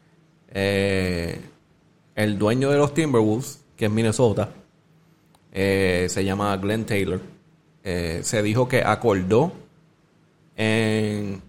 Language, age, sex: Spanish, 30-49, male